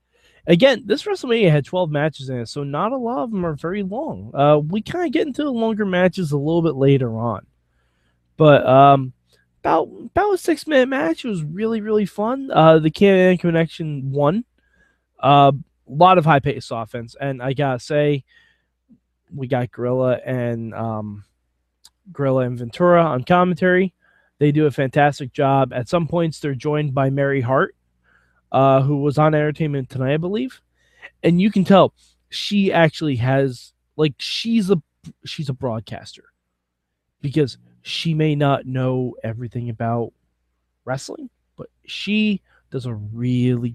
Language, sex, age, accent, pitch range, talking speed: English, male, 20-39, American, 120-175 Hz, 160 wpm